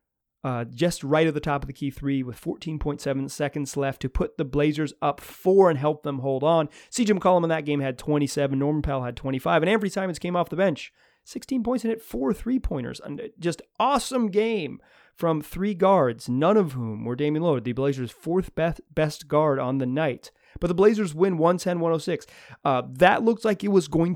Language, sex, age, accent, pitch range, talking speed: English, male, 30-49, American, 140-185 Hz, 200 wpm